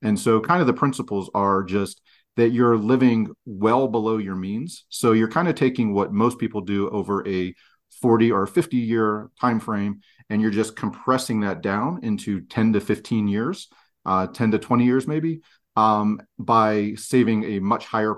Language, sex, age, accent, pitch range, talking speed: English, male, 40-59, American, 95-115 Hz, 180 wpm